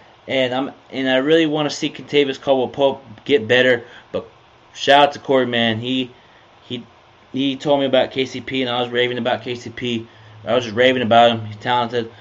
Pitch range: 115-135 Hz